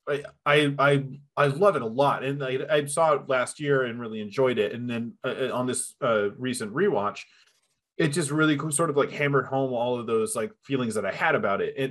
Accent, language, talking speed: American, English, 225 wpm